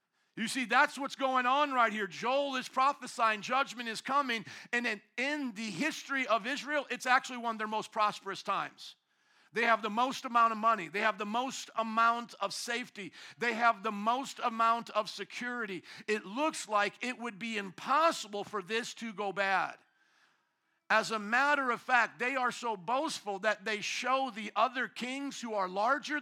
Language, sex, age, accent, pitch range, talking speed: English, male, 50-69, American, 205-245 Hz, 180 wpm